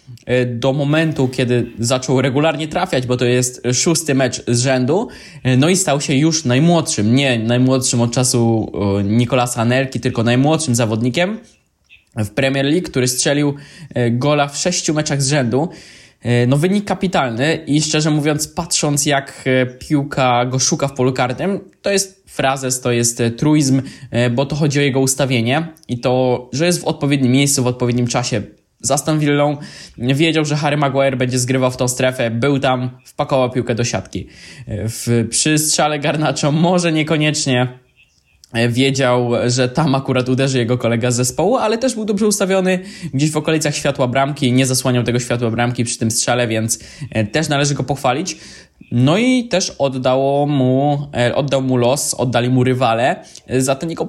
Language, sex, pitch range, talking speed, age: Polish, male, 125-150 Hz, 160 wpm, 20-39